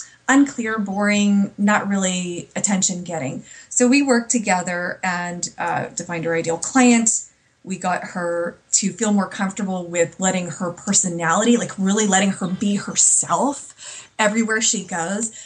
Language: English